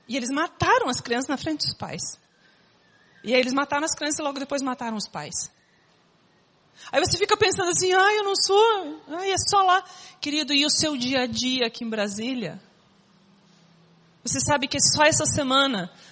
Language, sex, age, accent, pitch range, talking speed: Portuguese, female, 40-59, Brazilian, 240-305 Hz, 185 wpm